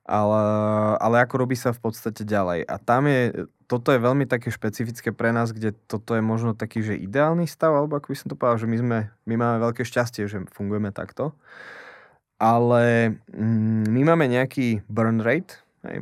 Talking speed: 185 wpm